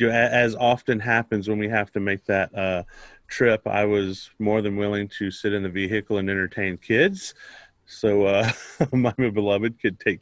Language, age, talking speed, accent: English, 30-49, 190 wpm, American